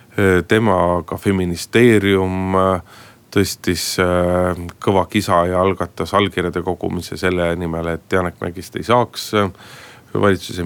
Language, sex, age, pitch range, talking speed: Finnish, male, 30-49, 90-100 Hz, 100 wpm